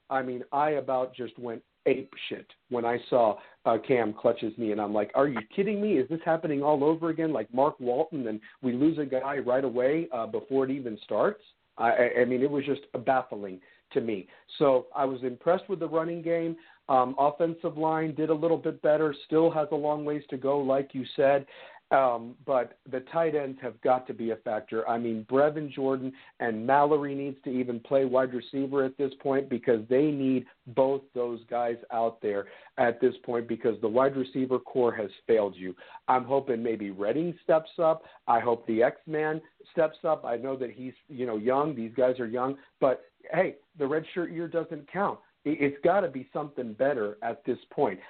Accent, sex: American, male